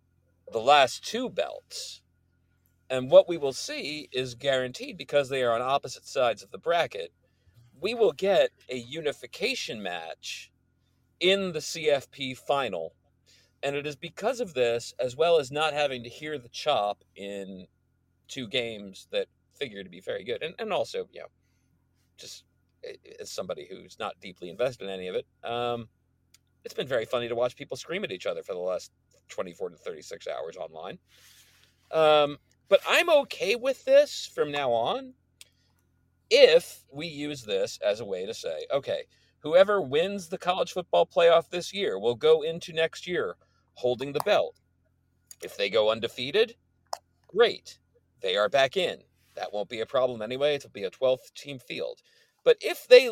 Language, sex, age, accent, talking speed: English, male, 40-59, American, 170 wpm